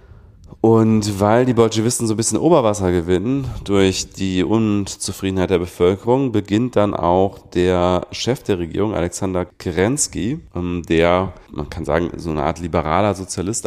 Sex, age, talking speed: male, 40-59, 140 wpm